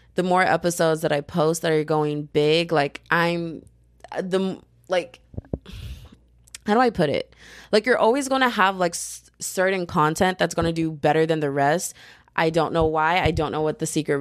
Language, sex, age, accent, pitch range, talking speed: English, female, 20-39, American, 155-195 Hz, 185 wpm